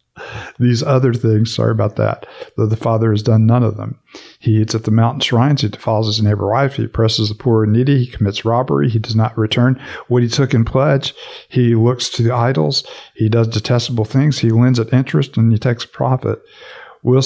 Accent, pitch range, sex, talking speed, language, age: American, 110-125 Hz, male, 210 wpm, English, 50-69